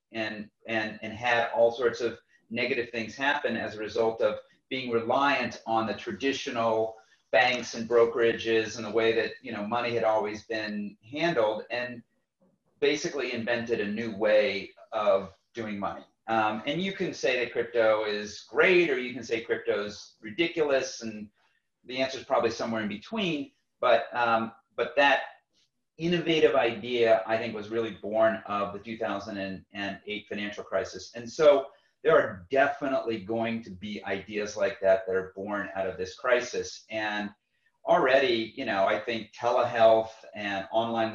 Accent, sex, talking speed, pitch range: American, male, 160 wpm, 105-125 Hz